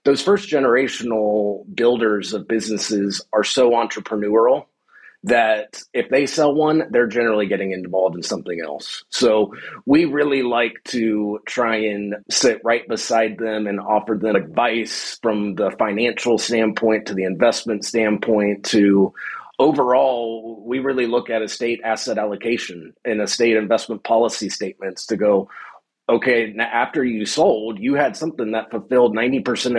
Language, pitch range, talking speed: English, 110-125 Hz, 145 wpm